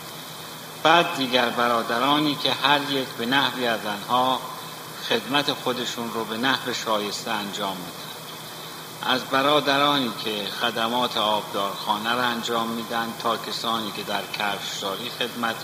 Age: 50-69